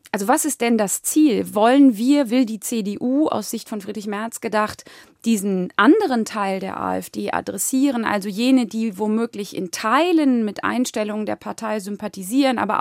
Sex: female